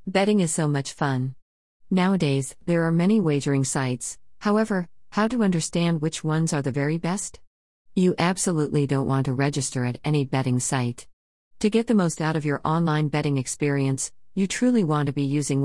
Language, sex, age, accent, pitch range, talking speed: English, female, 50-69, American, 130-165 Hz, 180 wpm